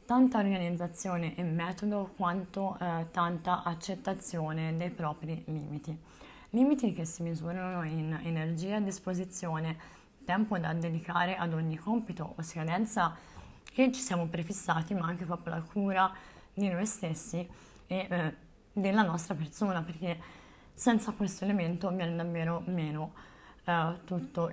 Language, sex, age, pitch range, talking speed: Italian, female, 20-39, 160-185 Hz, 130 wpm